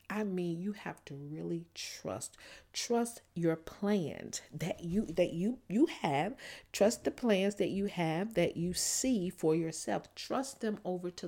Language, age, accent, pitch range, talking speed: English, 40-59, American, 165-220 Hz, 165 wpm